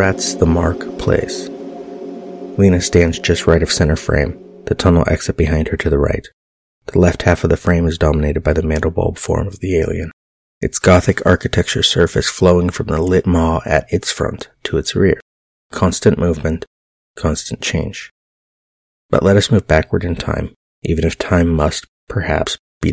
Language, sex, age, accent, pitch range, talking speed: English, male, 30-49, American, 80-95 Hz, 175 wpm